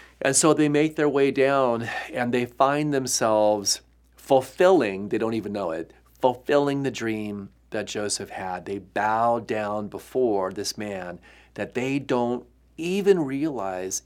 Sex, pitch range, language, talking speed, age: male, 105-135 Hz, English, 135 wpm, 40-59